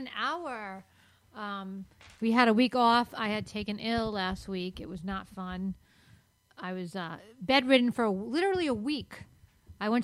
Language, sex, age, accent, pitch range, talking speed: English, female, 40-59, American, 190-240 Hz, 175 wpm